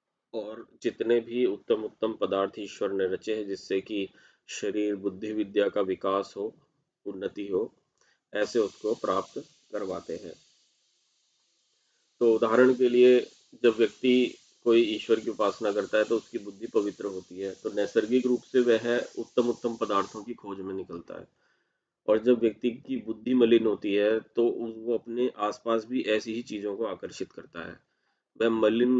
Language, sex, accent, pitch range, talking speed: Hindi, male, native, 105-120 Hz, 160 wpm